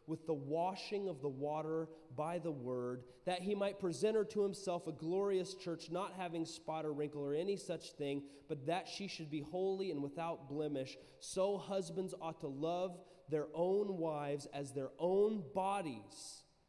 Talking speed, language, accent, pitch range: 175 wpm, English, American, 135-185 Hz